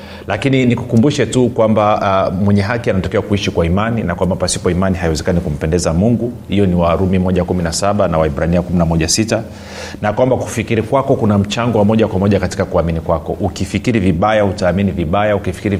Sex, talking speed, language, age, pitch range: male, 170 wpm, Swahili, 40-59, 90-110 Hz